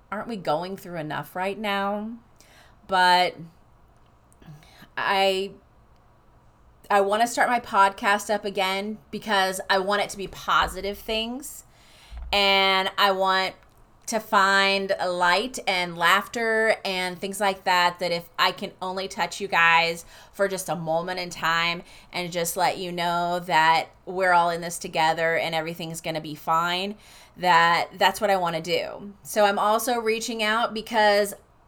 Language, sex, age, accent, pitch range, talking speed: English, female, 30-49, American, 170-215 Hz, 150 wpm